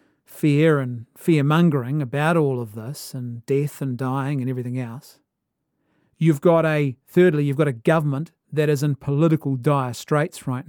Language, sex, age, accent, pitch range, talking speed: English, male, 40-59, Australian, 145-170 Hz, 165 wpm